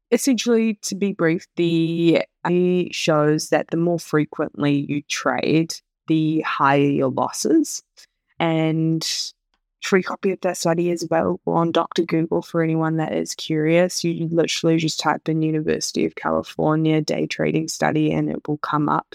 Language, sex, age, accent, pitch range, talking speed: English, female, 20-39, Australian, 155-175 Hz, 155 wpm